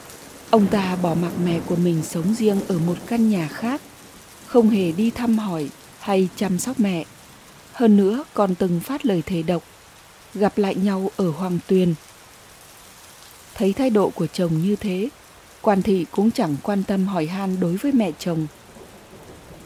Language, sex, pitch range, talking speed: Vietnamese, female, 180-220 Hz, 170 wpm